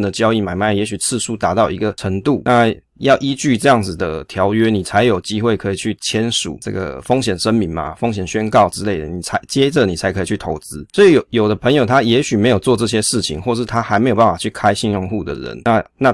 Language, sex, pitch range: Chinese, male, 100-120 Hz